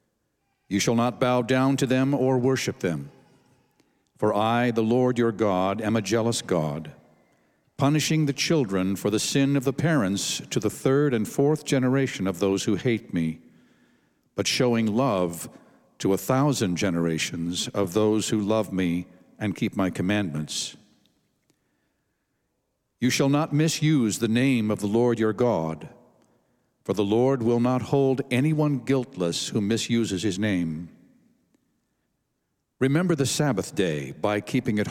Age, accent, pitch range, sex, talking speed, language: 60-79, American, 100-130 Hz, male, 150 wpm, English